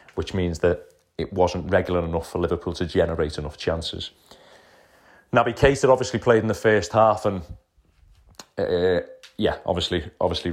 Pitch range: 90-100 Hz